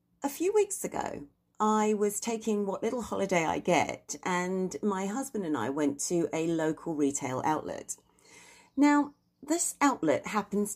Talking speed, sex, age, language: 150 wpm, female, 40-59, English